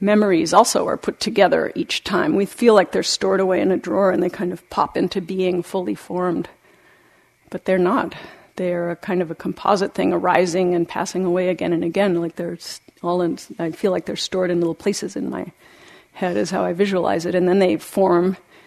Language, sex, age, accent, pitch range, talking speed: English, female, 40-59, American, 170-190 Hz, 210 wpm